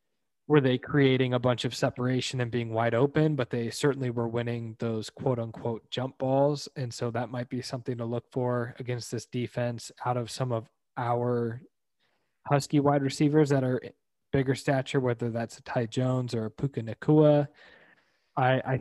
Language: English